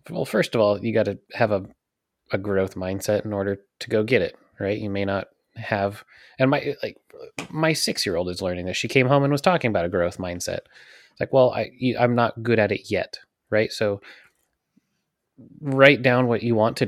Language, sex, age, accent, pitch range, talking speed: English, male, 20-39, American, 95-120 Hz, 205 wpm